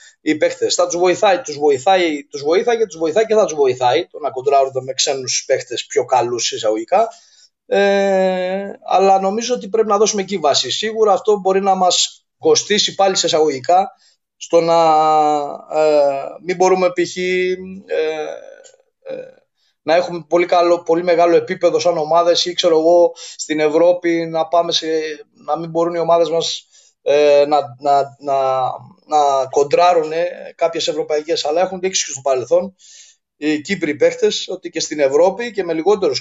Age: 20-39